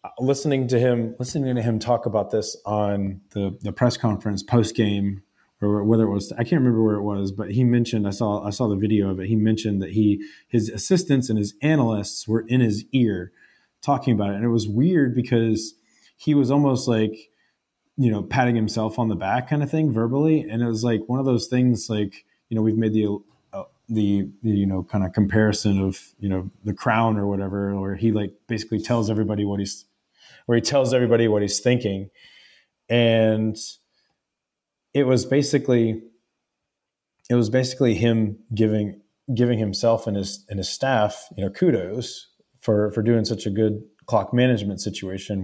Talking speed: 190 wpm